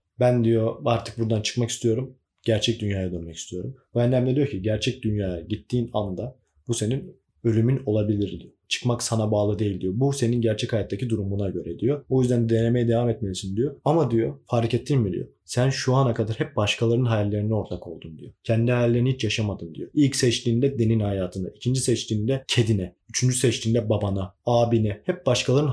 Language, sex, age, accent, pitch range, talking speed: Turkish, male, 30-49, native, 105-125 Hz, 175 wpm